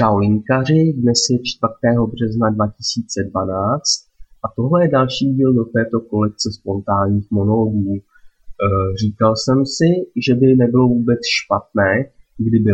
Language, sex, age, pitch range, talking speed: Czech, male, 20-39, 105-135 Hz, 120 wpm